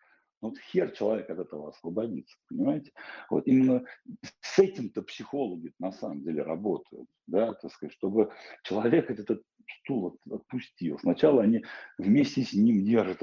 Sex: male